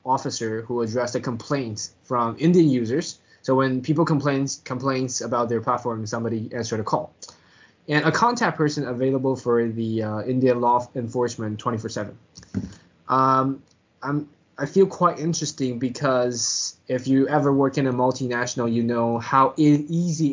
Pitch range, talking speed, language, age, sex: 120-155 Hz, 150 wpm, English, 20-39, male